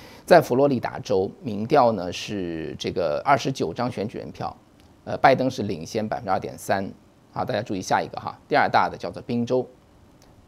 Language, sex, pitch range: Chinese, male, 110-145 Hz